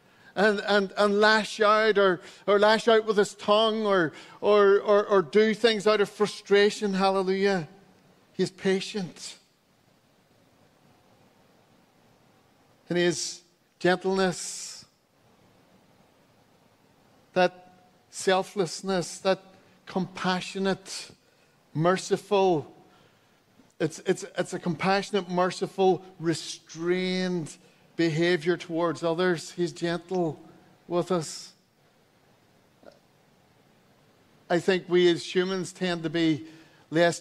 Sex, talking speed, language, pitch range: male, 90 wpm, English, 170-190 Hz